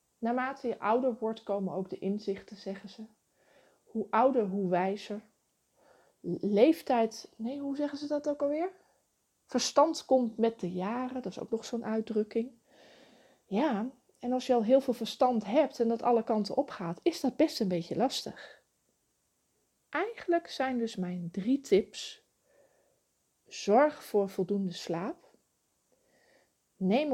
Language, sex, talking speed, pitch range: Dutch, female, 145 wpm, 200-270 Hz